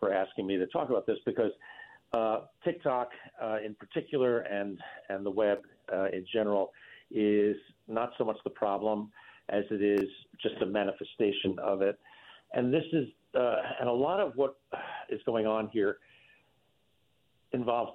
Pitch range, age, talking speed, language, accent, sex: 100-120 Hz, 50-69, 160 wpm, English, American, male